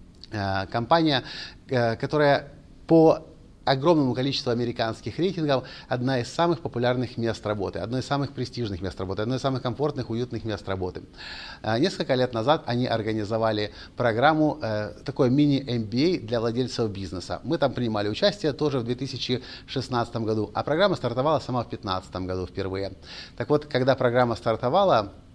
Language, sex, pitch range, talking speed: Russian, male, 105-140 Hz, 135 wpm